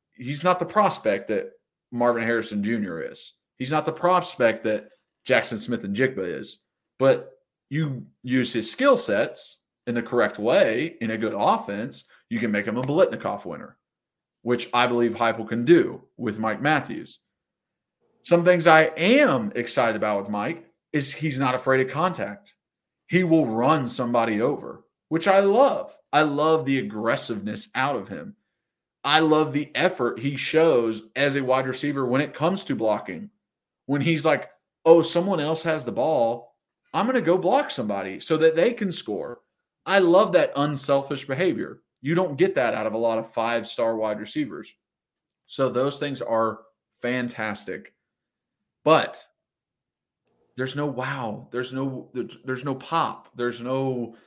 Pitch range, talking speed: 120-170 Hz, 160 wpm